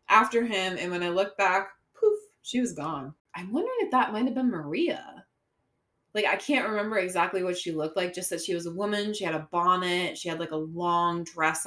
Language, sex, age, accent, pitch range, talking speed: English, female, 20-39, American, 155-185 Hz, 225 wpm